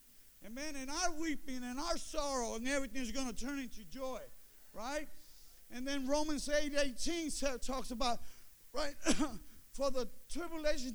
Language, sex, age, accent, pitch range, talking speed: English, male, 50-69, American, 230-290 Hz, 145 wpm